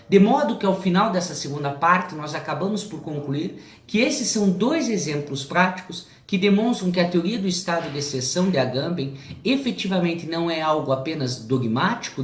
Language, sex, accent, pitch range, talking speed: Portuguese, male, Brazilian, 135-185 Hz, 170 wpm